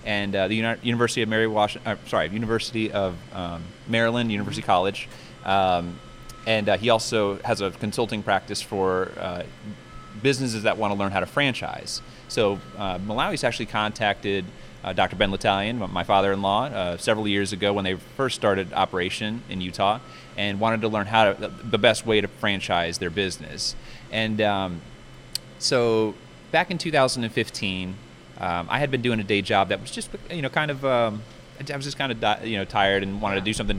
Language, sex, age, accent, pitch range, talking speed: English, male, 30-49, American, 95-110 Hz, 185 wpm